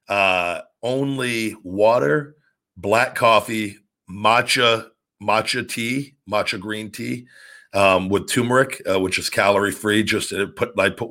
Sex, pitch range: male, 95-115 Hz